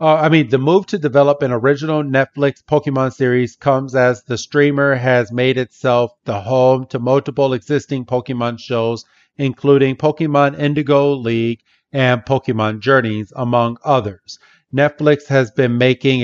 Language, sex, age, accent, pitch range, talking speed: English, male, 40-59, American, 120-140 Hz, 145 wpm